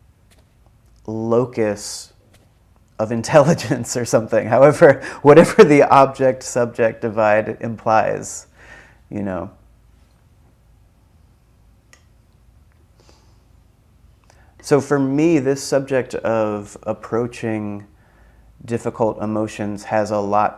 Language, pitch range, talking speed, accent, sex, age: English, 100-115 Hz, 75 wpm, American, male, 30-49